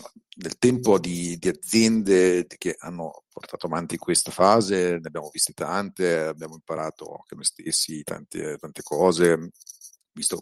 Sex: male